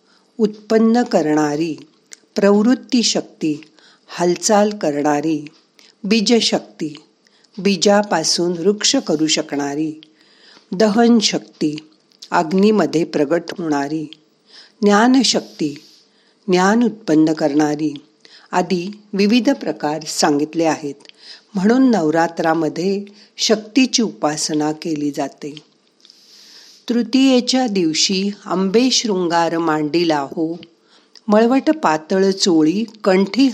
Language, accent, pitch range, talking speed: Marathi, native, 155-220 Hz, 75 wpm